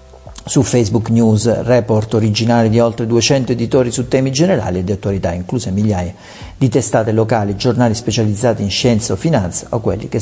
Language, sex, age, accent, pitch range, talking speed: Italian, male, 50-69, native, 100-125 Hz, 170 wpm